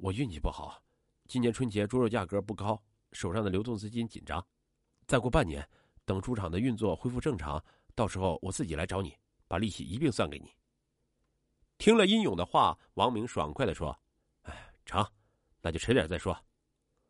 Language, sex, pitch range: Chinese, male, 85-125 Hz